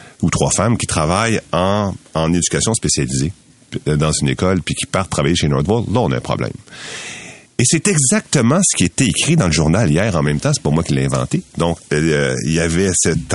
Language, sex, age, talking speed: French, male, 40-59, 220 wpm